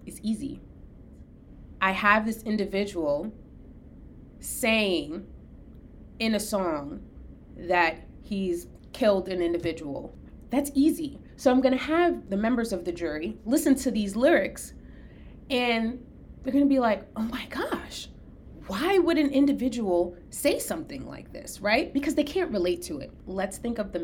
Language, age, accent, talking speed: English, 30-49, American, 140 wpm